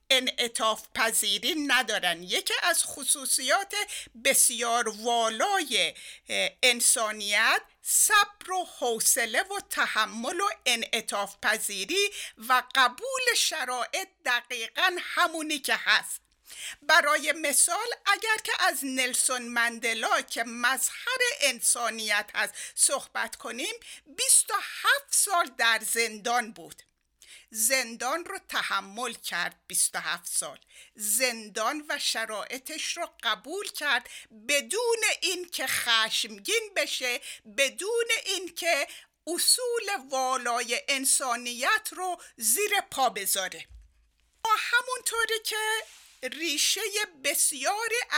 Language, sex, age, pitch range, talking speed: Persian, female, 60-79, 235-375 Hz, 95 wpm